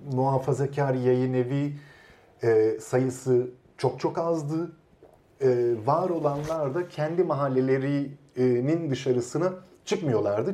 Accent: native